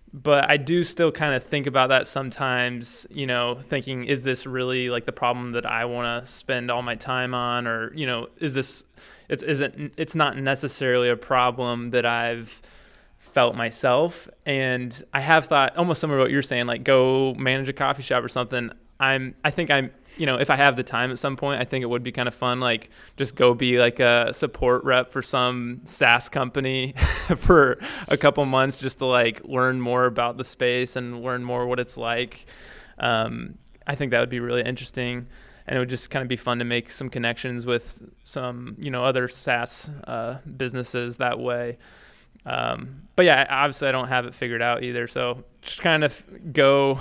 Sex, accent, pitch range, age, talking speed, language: male, American, 120-135 Hz, 20-39, 205 wpm, English